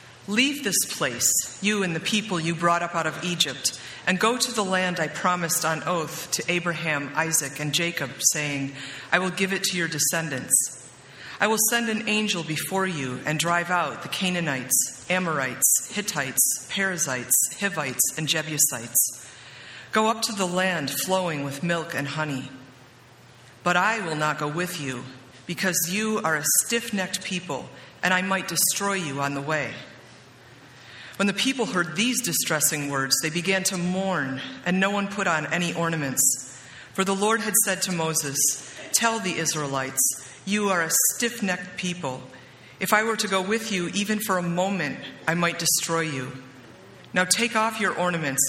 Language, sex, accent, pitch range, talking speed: English, female, American, 140-190 Hz, 170 wpm